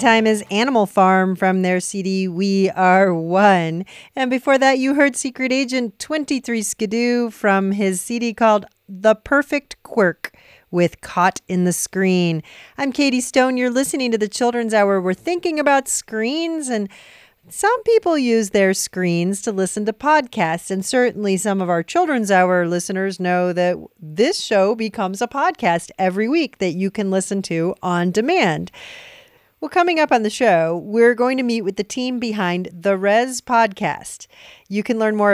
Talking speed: 170 wpm